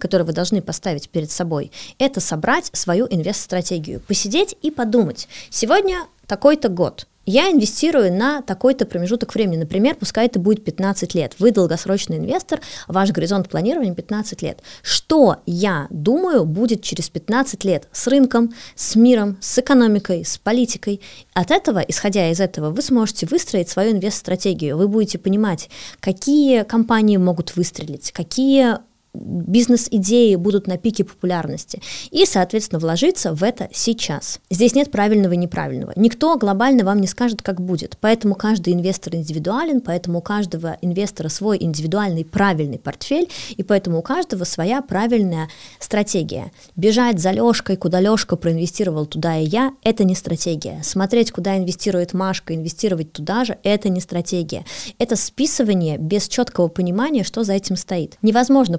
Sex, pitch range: female, 175-235 Hz